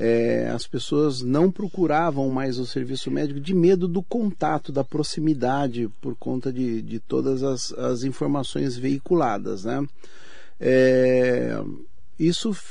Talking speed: 120 wpm